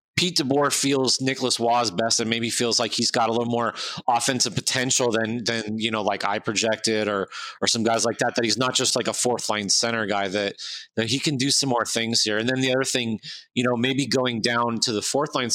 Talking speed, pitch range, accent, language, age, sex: 245 wpm, 115-135 Hz, American, English, 30-49, male